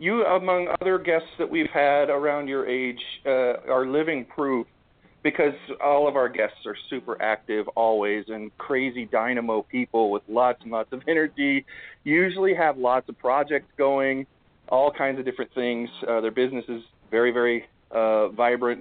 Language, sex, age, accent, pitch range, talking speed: English, male, 40-59, American, 125-170 Hz, 165 wpm